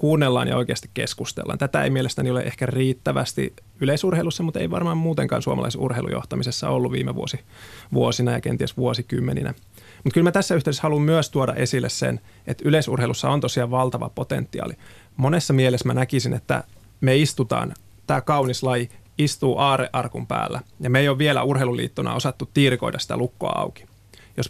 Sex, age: male, 30-49